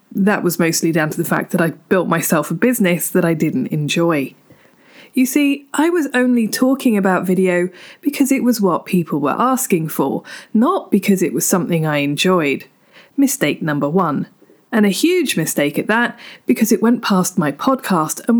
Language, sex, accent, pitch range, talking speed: English, female, British, 175-250 Hz, 185 wpm